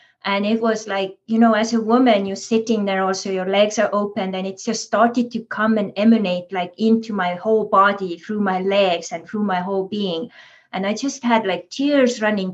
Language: English